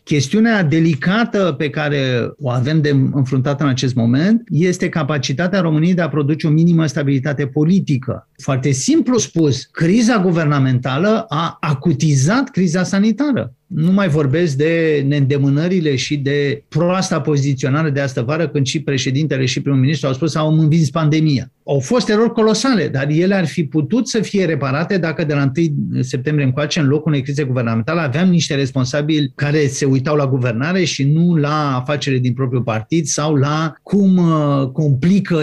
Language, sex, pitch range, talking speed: Romanian, male, 140-180 Hz, 165 wpm